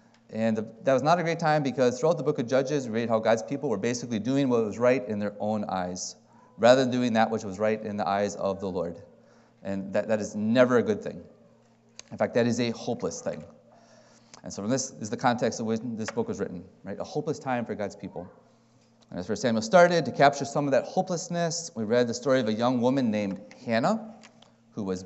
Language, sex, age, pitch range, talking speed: English, male, 30-49, 115-175 Hz, 240 wpm